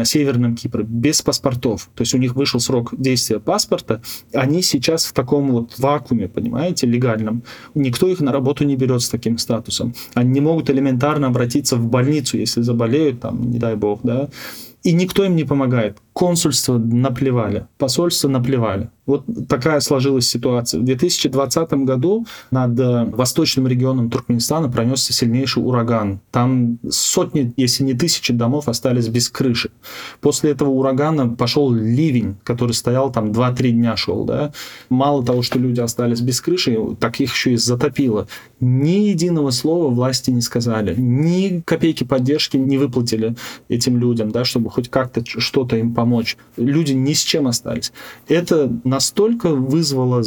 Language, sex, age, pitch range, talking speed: Russian, male, 20-39, 120-140 Hz, 155 wpm